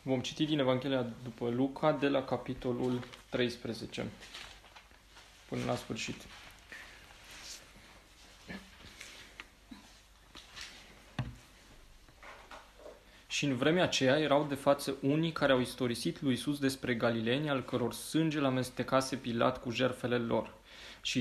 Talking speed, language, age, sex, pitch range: 110 wpm, Romanian, 20-39, male, 120-145 Hz